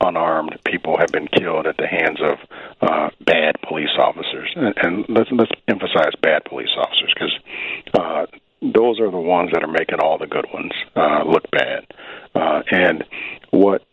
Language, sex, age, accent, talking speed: English, male, 50-69, American, 170 wpm